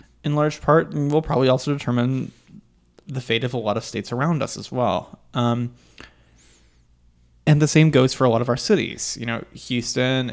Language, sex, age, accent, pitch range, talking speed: English, male, 20-39, American, 110-140 Hz, 190 wpm